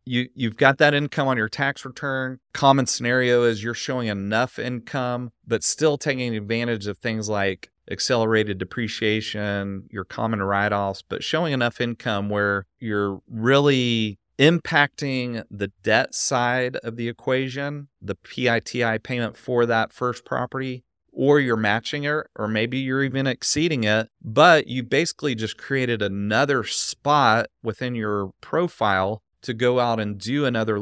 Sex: male